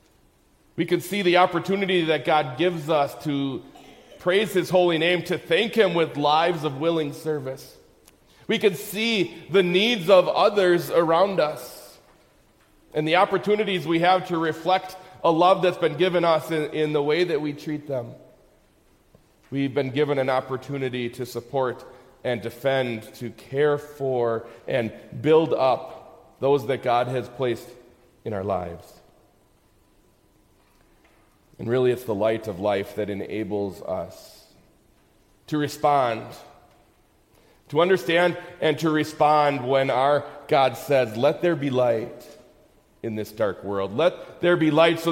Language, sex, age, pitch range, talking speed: English, male, 40-59, 125-170 Hz, 145 wpm